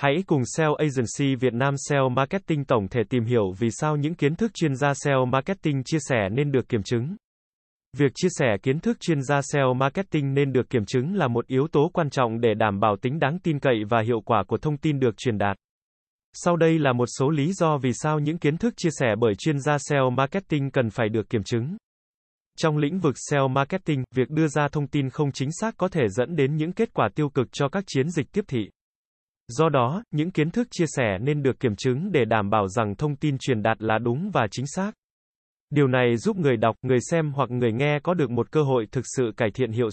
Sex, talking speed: male, 235 wpm